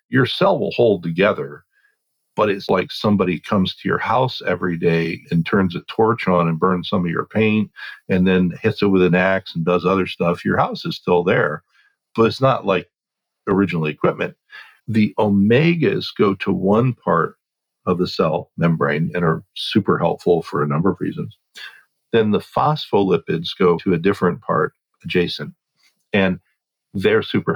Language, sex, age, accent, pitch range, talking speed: English, male, 50-69, American, 85-100 Hz, 170 wpm